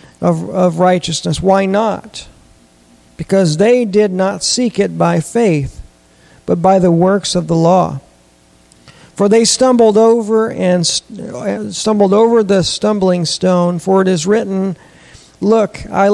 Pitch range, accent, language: 140-205 Hz, American, English